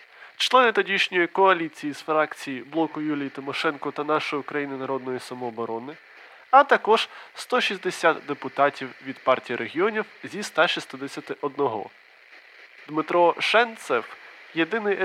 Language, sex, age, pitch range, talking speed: Ukrainian, male, 20-39, 140-195 Hz, 100 wpm